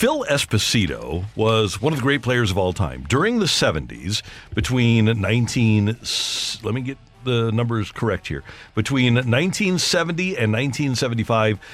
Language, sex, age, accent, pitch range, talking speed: English, male, 50-69, American, 105-135 Hz, 140 wpm